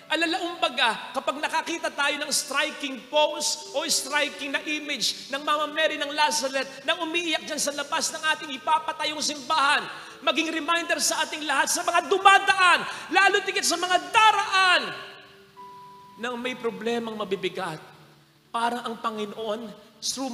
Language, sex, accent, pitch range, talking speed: Filipino, male, native, 225-300 Hz, 135 wpm